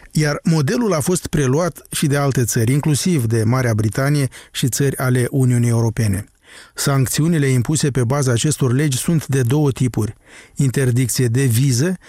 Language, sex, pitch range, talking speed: Romanian, male, 120-145 Hz, 155 wpm